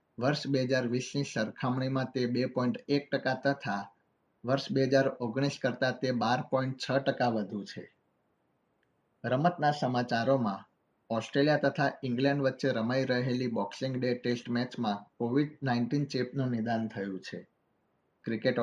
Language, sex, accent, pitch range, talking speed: Gujarati, male, native, 120-135 Hz, 50 wpm